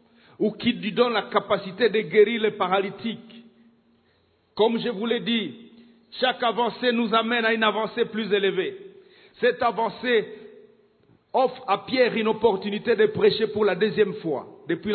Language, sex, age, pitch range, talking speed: English, male, 50-69, 205-275 Hz, 155 wpm